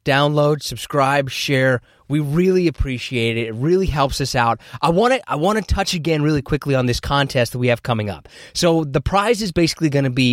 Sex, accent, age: male, American, 20-39